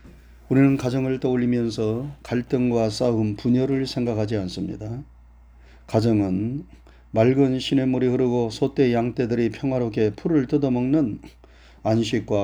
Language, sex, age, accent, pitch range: Korean, male, 40-59, native, 80-130 Hz